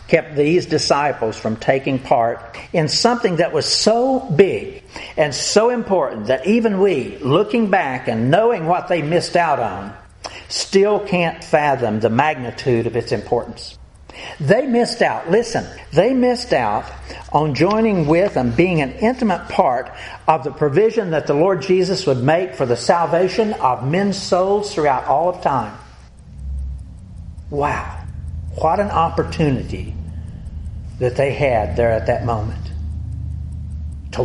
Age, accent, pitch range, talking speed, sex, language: 60-79, American, 105-170 Hz, 140 wpm, male, English